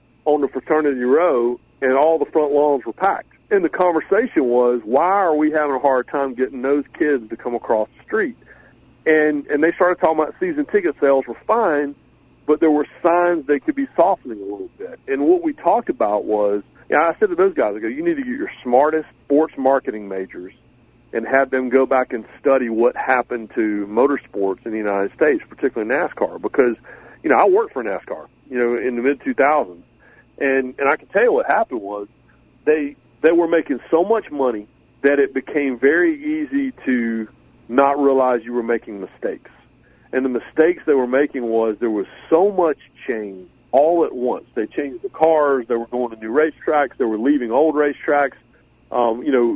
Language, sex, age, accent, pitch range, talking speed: English, male, 40-59, American, 120-160 Hz, 200 wpm